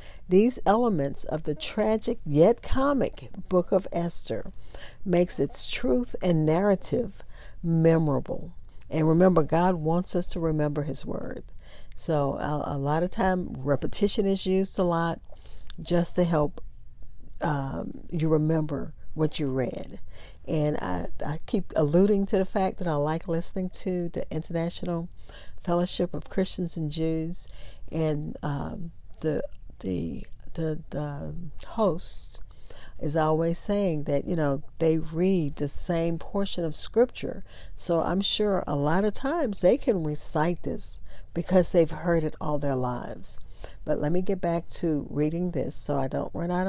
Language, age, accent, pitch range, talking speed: English, 50-69, American, 150-185 Hz, 150 wpm